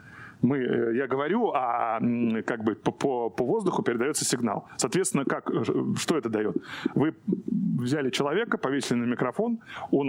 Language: Russian